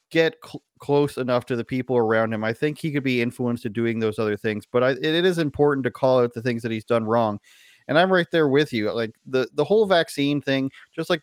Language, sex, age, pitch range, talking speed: English, male, 30-49, 115-145 Hz, 245 wpm